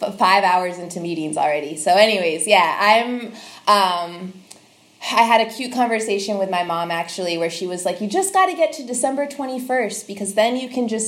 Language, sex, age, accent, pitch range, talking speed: English, female, 20-39, American, 180-225 Hz, 195 wpm